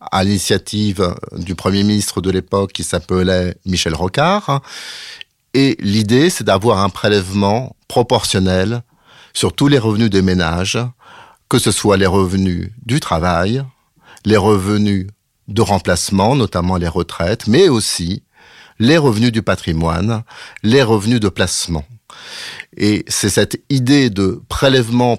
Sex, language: male, French